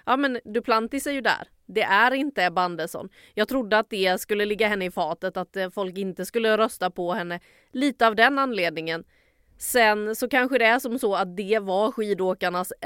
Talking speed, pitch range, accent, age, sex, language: 195 wpm, 185-225 Hz, Swedish, 30-49, female, English